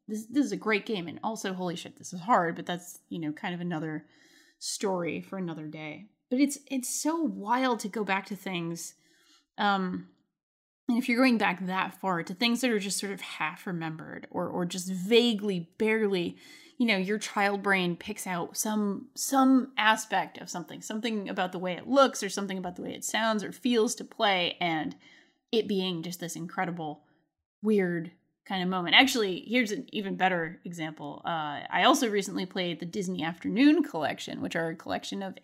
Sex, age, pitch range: female, 20-39, 180-240 Hz